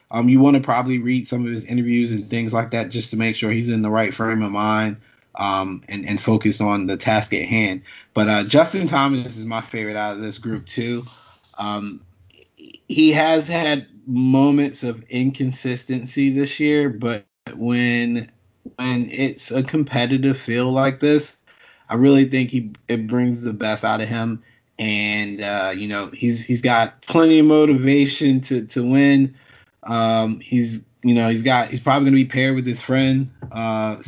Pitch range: 110-130 Hz